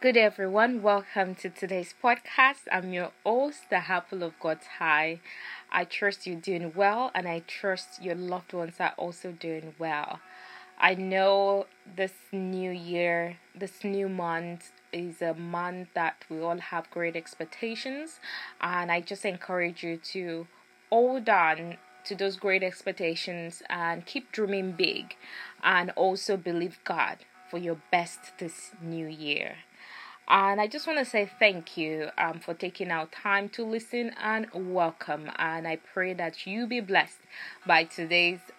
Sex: female